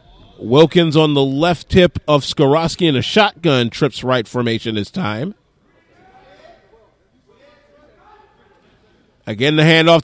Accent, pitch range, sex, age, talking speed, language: American, 145-205 Hz, male, 40-59, 110 wpm, English